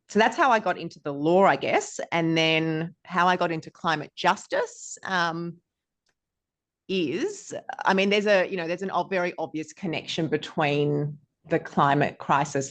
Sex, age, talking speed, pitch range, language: female, 30-49, 165 wpm, 145-180 Hz, English